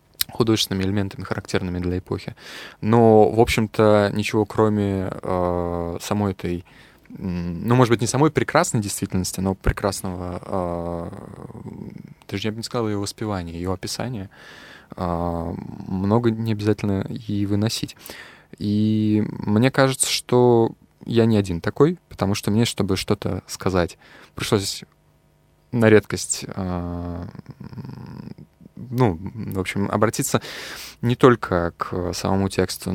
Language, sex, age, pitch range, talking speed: Russian, male, 20-39, 95-115 Hz, 120 wpm